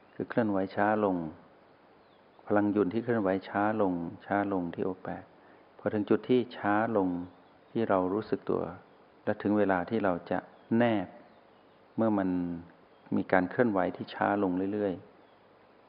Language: Thai